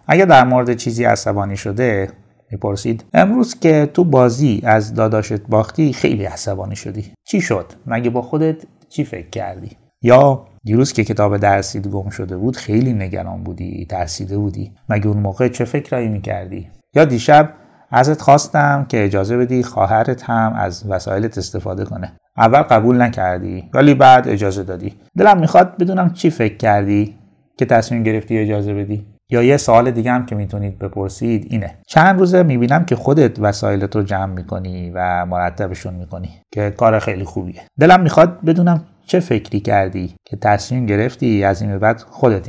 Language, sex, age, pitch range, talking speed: Persian, male, 30-49, 100-130 Hz, 160 wpm